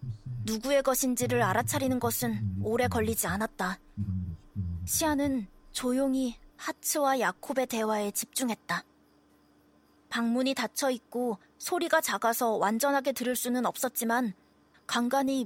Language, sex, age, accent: Korean, female, 20-39, native